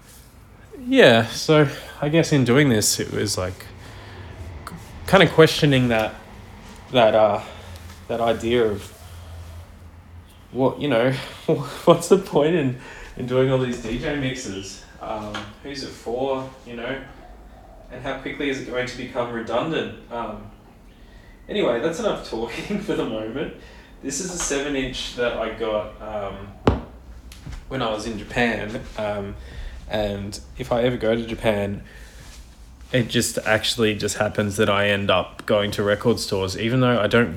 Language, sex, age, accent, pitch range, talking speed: English, male, 20-39, Australian, 95-125 Hz, 150 wpm